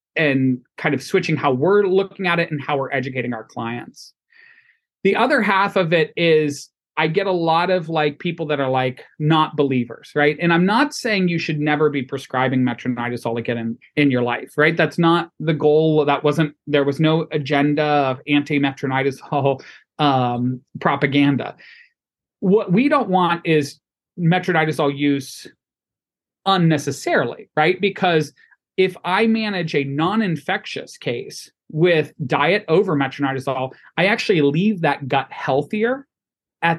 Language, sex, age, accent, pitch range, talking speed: English, male, 30-49, American, 140-180 Hz, 145 wpm